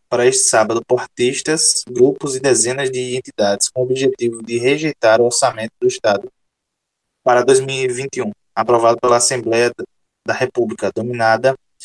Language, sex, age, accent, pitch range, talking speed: Portuguese, male, 20-39, Brazilian, 120-185 Hz, 130 wpm